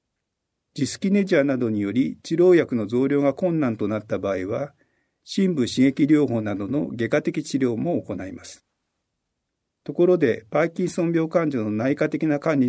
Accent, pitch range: native, 115-165 Hz